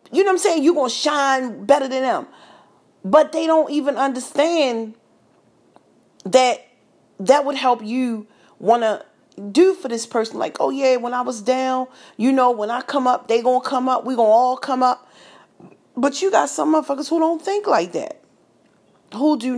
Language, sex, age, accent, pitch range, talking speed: English, female, 40-59, American, 195-260 Hz, 195 wpm